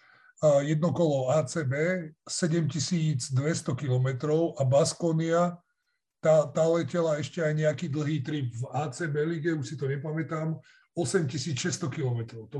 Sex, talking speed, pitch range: male, 110 wpm, 140-170 Hz